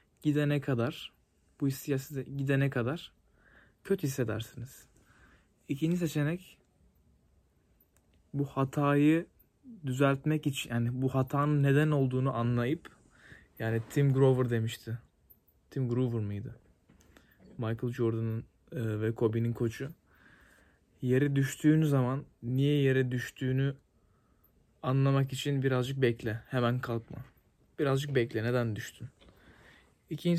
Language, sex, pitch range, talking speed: Turkish, male, 120-145 Hz, 95 wpm